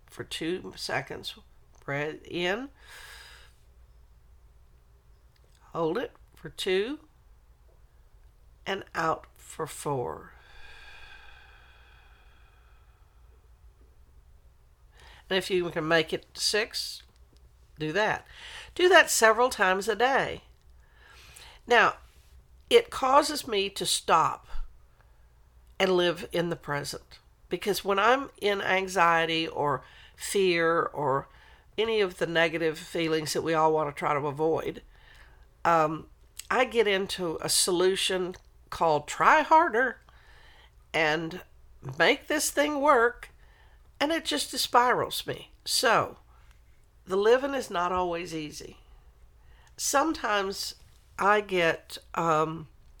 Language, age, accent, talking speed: English, 60-79, American, 100 wpm